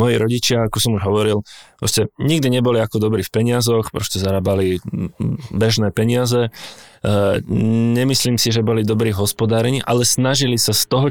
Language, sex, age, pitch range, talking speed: Czech, male, 20-39, 100-115 Hz, 150 wpm